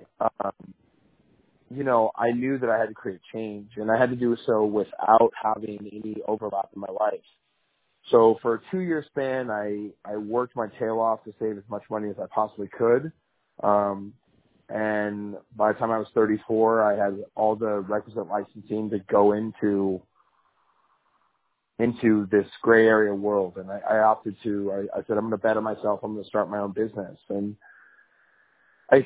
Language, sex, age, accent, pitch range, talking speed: English, male, 30-49, American, 105-115 Hz, 180 wpm